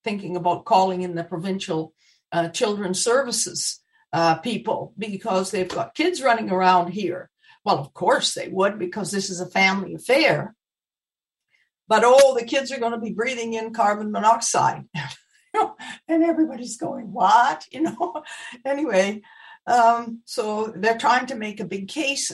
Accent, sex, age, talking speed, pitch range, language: American, female, 60-79, 155 wpm, 180-230 Hz, English